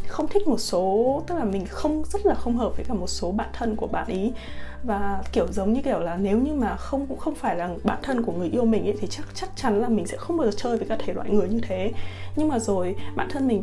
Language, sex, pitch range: Vietnamese, female, 195-250 Hz